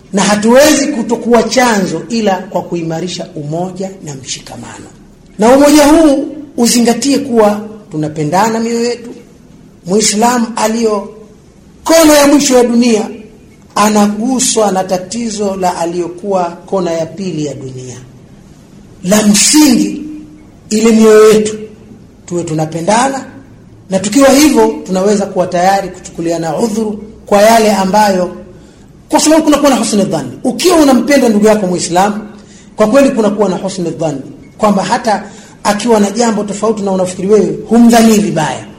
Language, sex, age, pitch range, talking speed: Swahili, male, 40-59, 180-235 Hz, 120 wpm